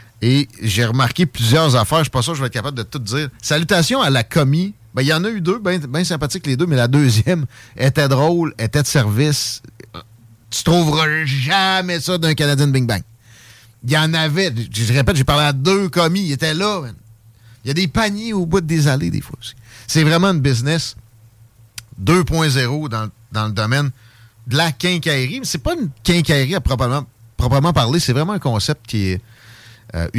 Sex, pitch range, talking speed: male, 115-155 Hz, 205 wpm